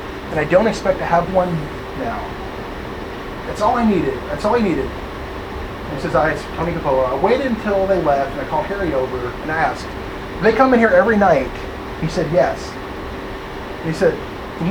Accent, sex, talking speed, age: American, male, 210 wpm, 30-49